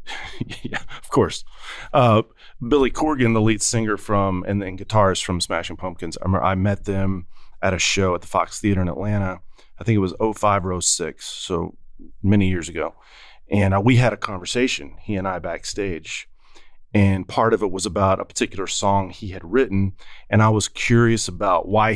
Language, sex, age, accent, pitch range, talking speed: English, male, 30-49, American, 95-110 Hz, 185 wpm